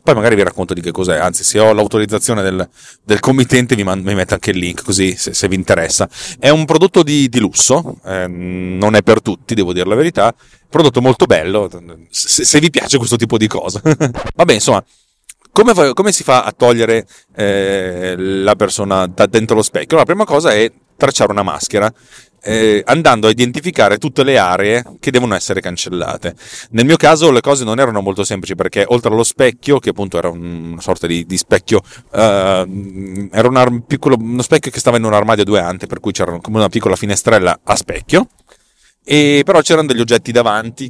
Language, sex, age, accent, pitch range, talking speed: Italian, male, 30-49, native, 95-130 Hz, 200 wpm